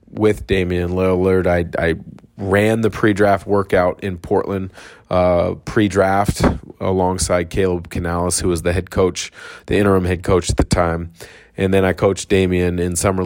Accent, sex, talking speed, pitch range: American, male, 160 wpm, 90-100 Hz